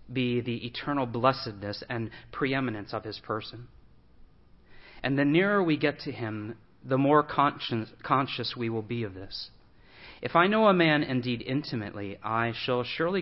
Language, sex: English, male